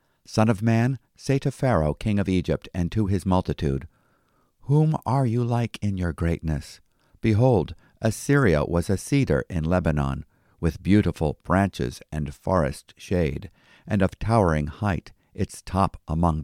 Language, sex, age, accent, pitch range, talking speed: English, male, 50-69, American, 85-105 Hz, 145 wpm